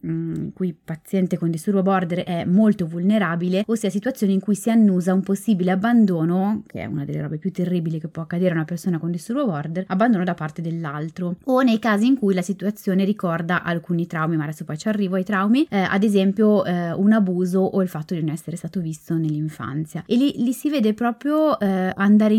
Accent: native